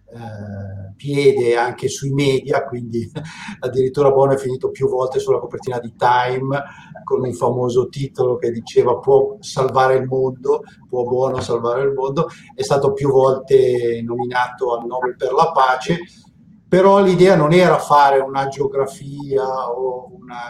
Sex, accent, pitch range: male, native, 130-190 Hz